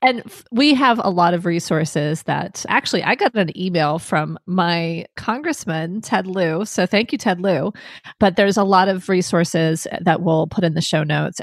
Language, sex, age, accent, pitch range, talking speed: English, female, 30-49, American, 165-210 Hz, 195 wpm